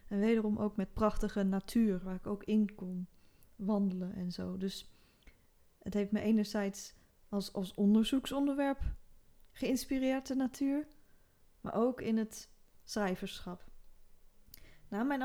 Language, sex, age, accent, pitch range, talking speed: Dutch, female, 20-39, Dutch, 195-225 Hz, 125 wpm